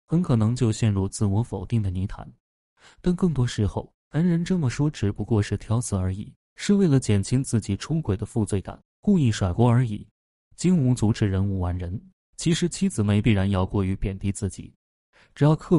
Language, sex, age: Chinese, male, 20-39